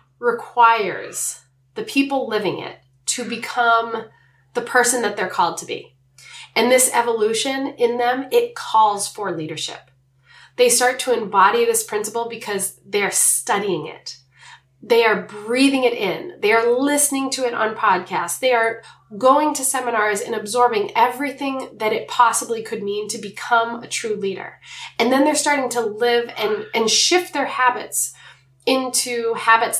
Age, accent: 20-39, American